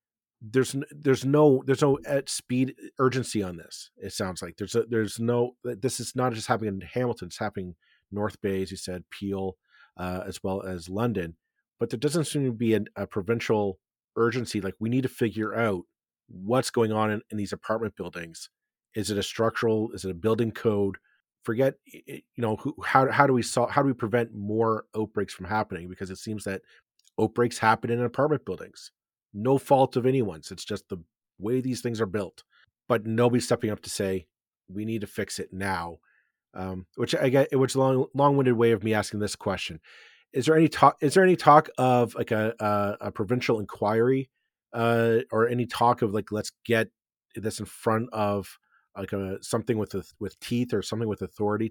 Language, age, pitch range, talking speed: English, 40-59, 100-125 Hz, 200 wpm